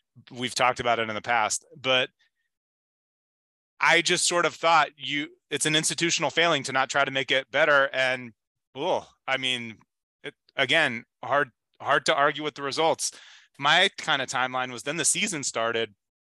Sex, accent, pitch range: male, American, 120-150 Hz